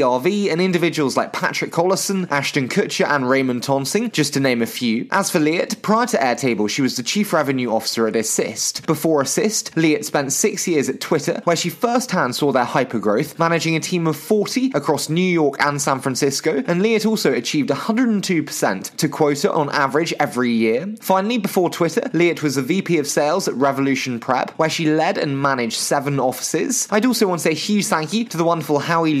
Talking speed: 205 wpm